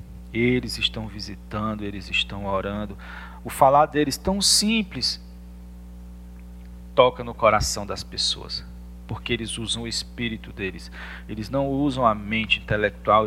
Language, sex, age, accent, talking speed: Portuguese, male, 40-59, Brazilian, 125 wpm